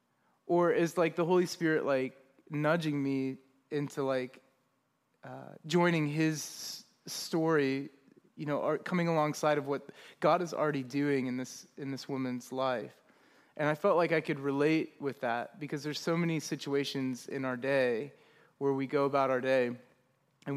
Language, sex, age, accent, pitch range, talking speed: English, male, 30-49, American, 135-165 Hz, 165 wpm